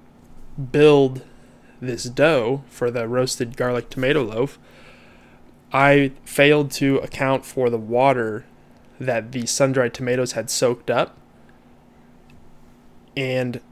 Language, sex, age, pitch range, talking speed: English, male, 20-39, 120-140 Hz, 105 wpm